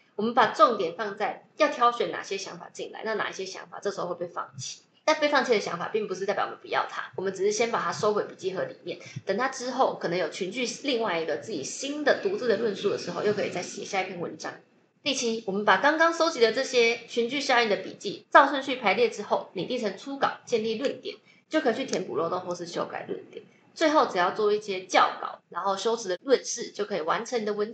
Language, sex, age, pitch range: Chinese, female, 20-39, 200-315 Hz